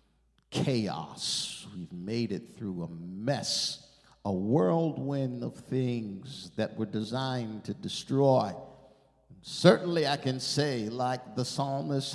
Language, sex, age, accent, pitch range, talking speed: English, male, 60-79, American, 110-140 Hz, 115 wpm